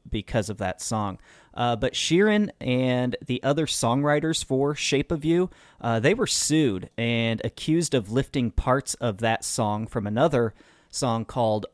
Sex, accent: male, American